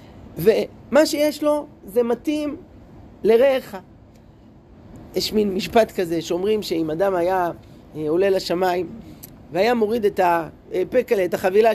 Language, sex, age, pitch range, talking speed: Hebrew, male, 30-49, 180-260 Hz, 110 wpm